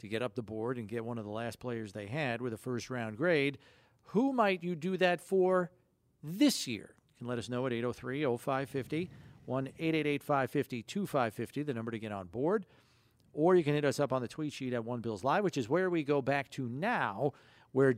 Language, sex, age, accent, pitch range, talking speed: English, male, 50-69, American, 125-160 Hz, 210 wpm